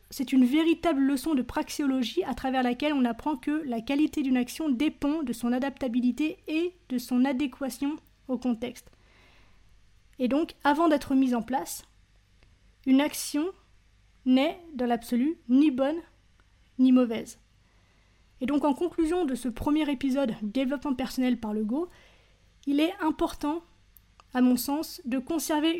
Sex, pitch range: female, 245-300 Hz